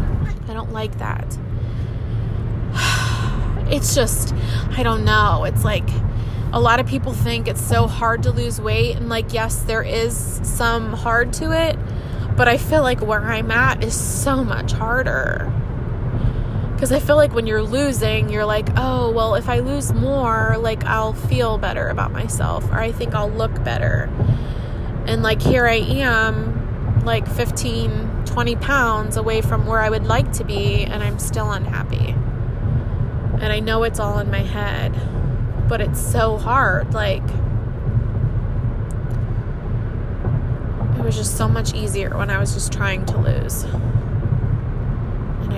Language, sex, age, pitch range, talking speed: English, female, 20-39, 110-120 Hz, 150 wpm